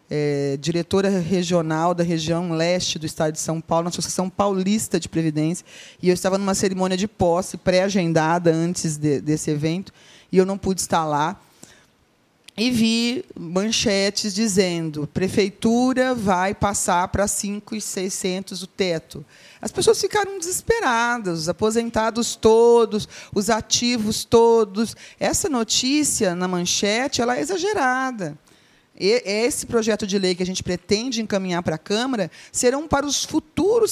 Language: Portuguese